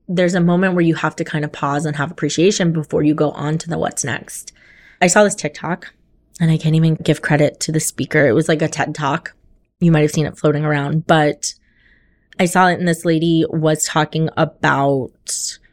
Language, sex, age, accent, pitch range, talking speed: English, female, 20-39, American, 150-180 Hz, 215 wpm